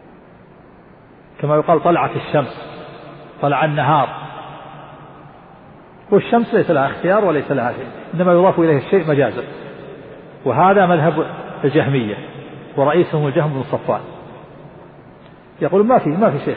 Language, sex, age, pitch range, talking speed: Arabic, male, 50-69, 160-200 Hz, 110 wpm